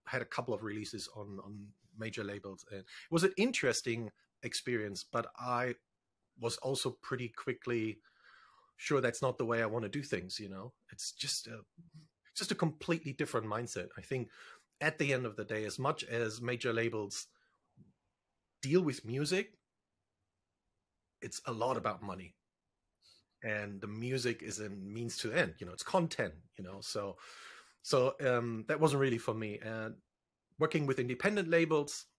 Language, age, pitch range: English, 30-49, 105-145 Hz